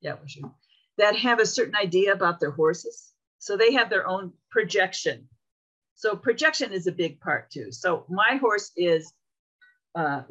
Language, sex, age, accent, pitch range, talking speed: English, female, 50-69, American, 155-230 Hz, 165 wpm